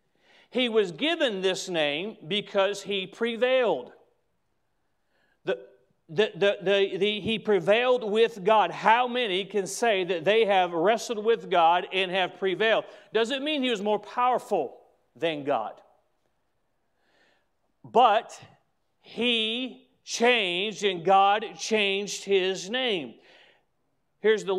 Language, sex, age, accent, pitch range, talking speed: English, male, 40-59, American, 160-210 Hz, 120 wpm